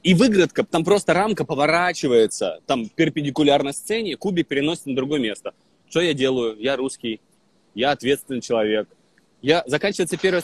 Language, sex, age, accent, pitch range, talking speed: Russian, male, 20-39, native, 155-195 Hz, 150 wpm